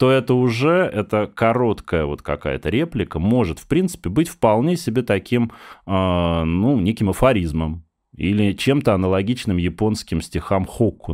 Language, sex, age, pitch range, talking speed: Russian, male, 20-39, 85-125 Hz, 130 wpm